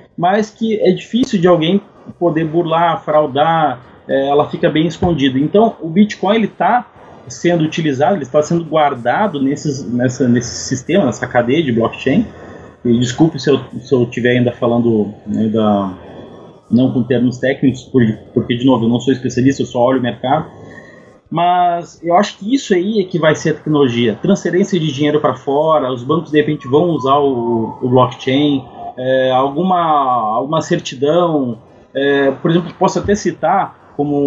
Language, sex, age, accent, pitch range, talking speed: Portuguese, male, 30-49, Brazilian, 135-185 Hz, 165 wpm